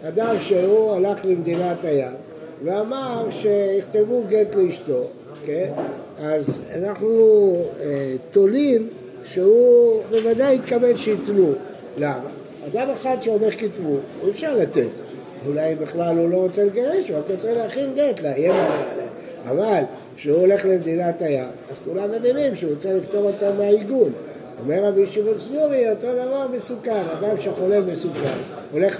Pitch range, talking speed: 165-230 Hz, 125 wpm